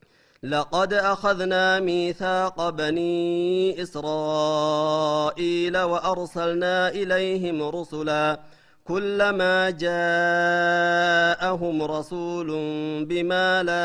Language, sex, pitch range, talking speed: Amharic, male, 160-190 Hz, 55 wpm